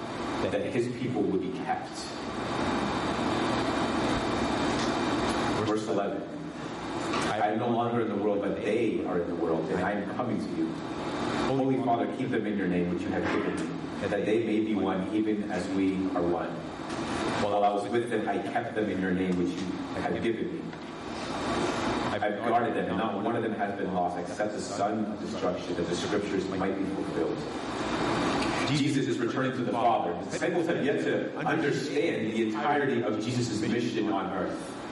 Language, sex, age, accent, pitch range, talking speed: English, male, 30-49, American, 100-115 Hz, 185 wpm